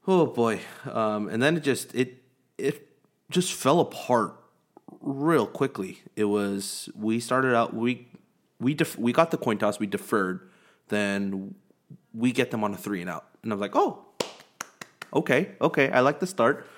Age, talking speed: 30-49, 175 wpm